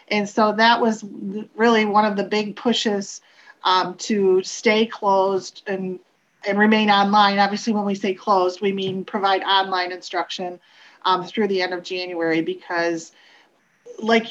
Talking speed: 150 wpm